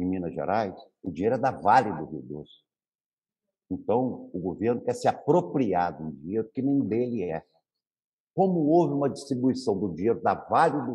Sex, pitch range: male, 120-180 Hz